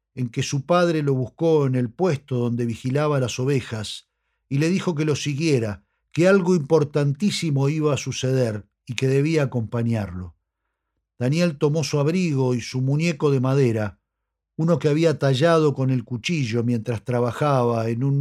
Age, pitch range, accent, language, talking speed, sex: 50-69, 120-155 Hz, Argentinian, Spanish, 160 wpm, male